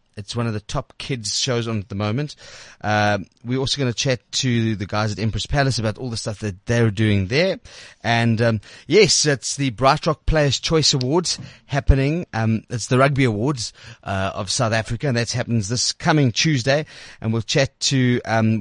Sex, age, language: male, 30-49, English